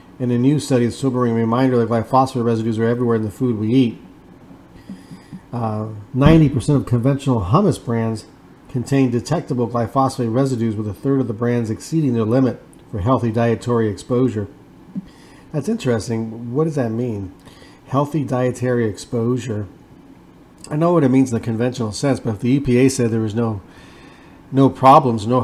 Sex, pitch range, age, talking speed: male, 115-135 Hz, 40-59, 165 wpm